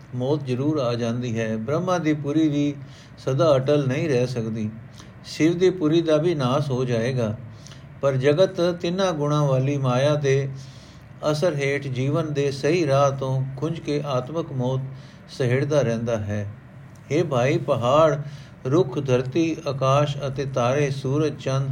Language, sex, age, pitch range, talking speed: Punjabi, male, 50-69, 130-150 Hz, 145 wpm